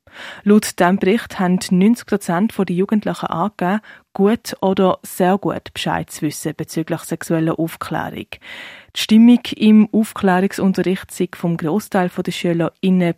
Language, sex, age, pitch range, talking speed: German, female, 20-39, 170-200 Hz, 125 wpm